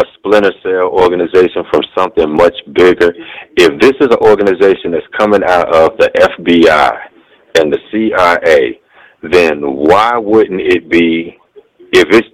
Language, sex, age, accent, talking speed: English, male, 50-69, American, 135 wpm